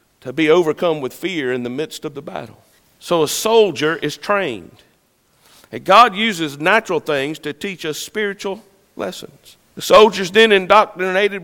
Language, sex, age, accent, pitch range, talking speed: English, male, 50-69, American, 165-210 Hz, 155 wpm